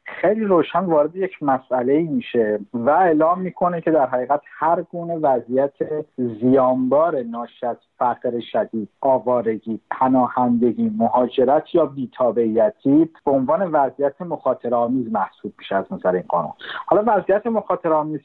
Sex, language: male, Persian